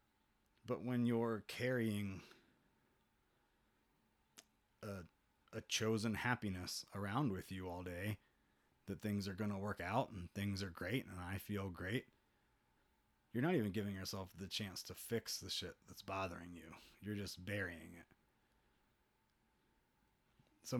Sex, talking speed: male, 135 wpm